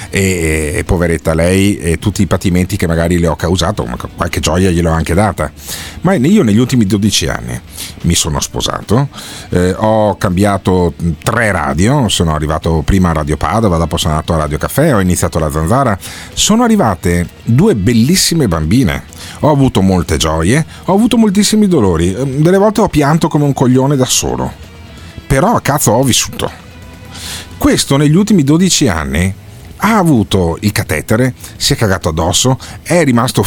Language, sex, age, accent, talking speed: Italian, male, 40-59, native, 165 wpm